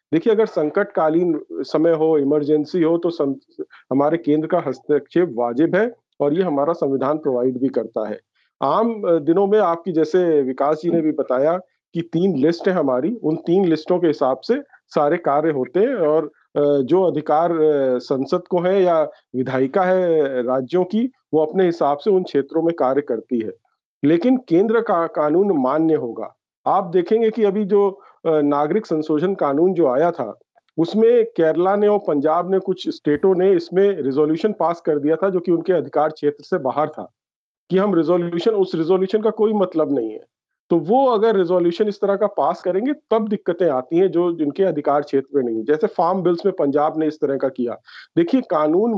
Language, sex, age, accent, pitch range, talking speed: English, male, 50-69, Indian, 150-200 Hz, 155 wpm